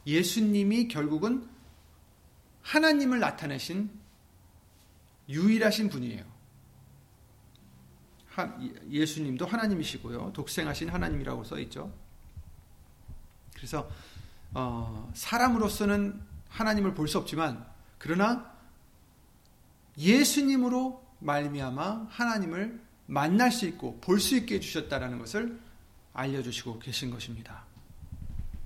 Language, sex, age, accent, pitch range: Korean, male, 40-59, native, 110-175 Hz